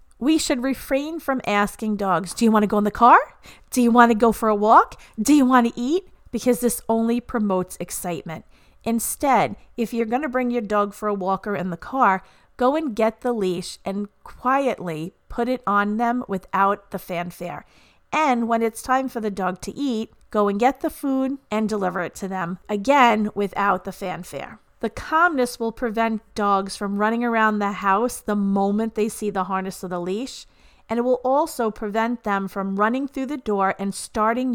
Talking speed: 200 wpm